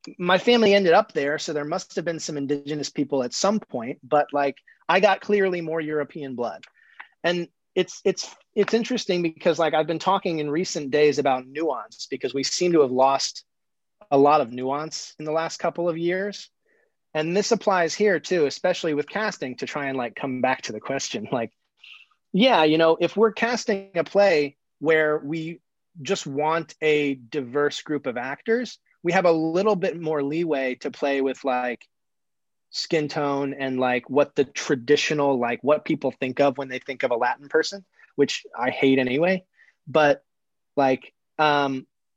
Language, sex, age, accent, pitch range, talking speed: English, male, 30-49, American, 140-180 Hz, 180 wpm